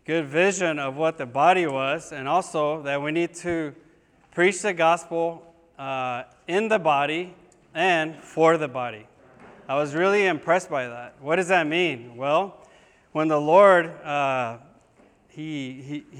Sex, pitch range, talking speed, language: male, 145-165 Hz, 150 wpm, English